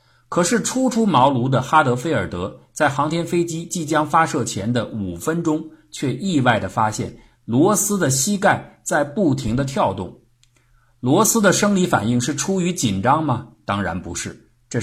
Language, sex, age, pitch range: Chinese, male, 50-69, 105-140 Hz